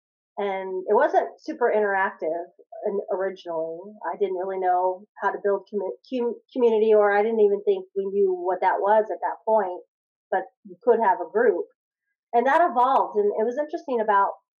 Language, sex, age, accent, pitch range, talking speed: English, female, 30-49, American, 190-225 Hz, 175 wpm